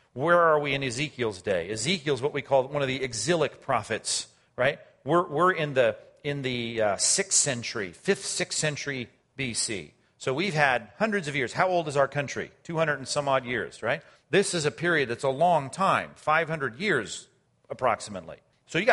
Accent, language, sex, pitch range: American, English, male, 140-185 Hz